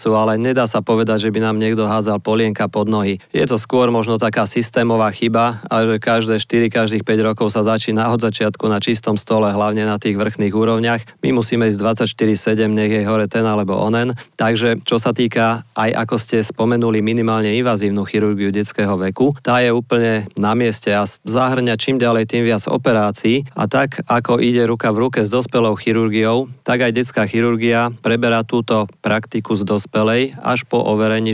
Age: 40-59